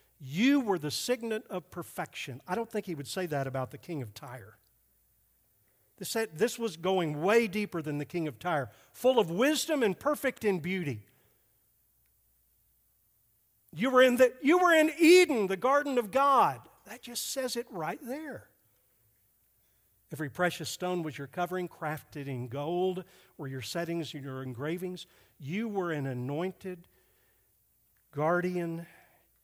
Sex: male